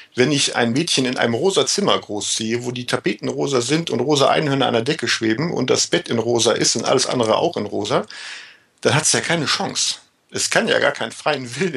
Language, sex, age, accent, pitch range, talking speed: German, male, 40-59, German, 110-140 Hz, 235 wpm